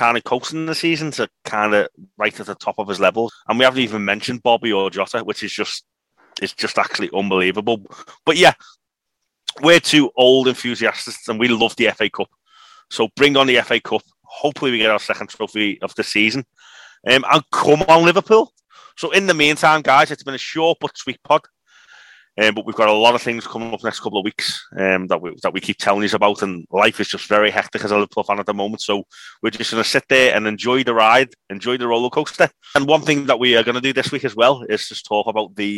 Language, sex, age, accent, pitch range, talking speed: English, male, 30-49, British, 105-130 Hz, 235 wpm